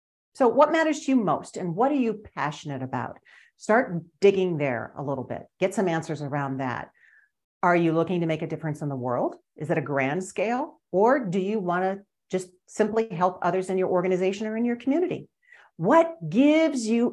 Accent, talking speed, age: American, 200 wpm, 50-69